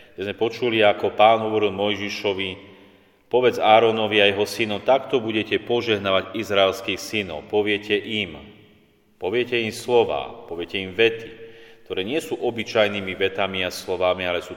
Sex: male